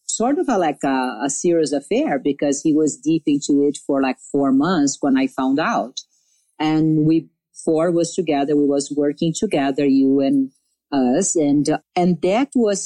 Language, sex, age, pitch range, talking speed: English, female, 50-69, 145-170 Hz, 175 wpm